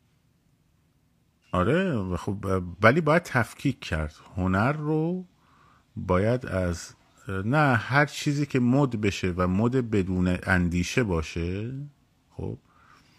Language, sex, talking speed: Persian, male, 100 wpm